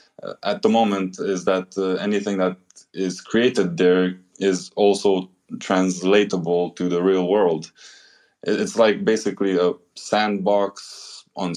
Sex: male